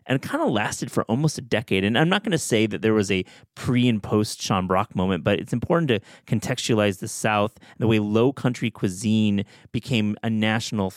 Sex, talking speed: male, 220 wpm